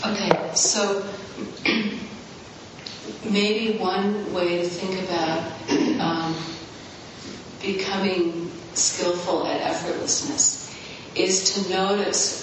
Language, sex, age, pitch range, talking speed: English, female, 40-59, 165-195 Hz, 75 wpm